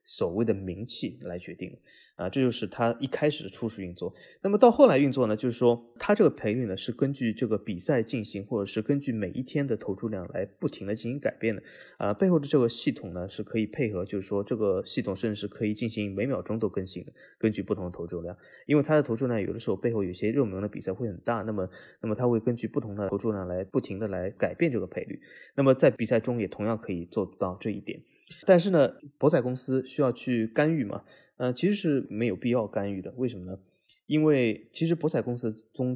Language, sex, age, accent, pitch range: Chinese, male, 20-39, native, 100-125 Hz